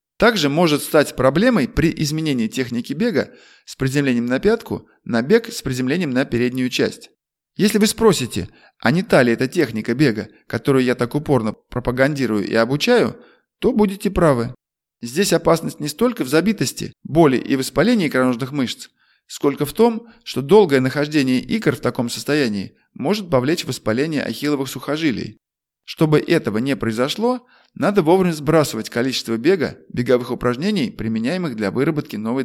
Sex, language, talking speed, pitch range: male, Russian, 150 wpm, 125-175 Hz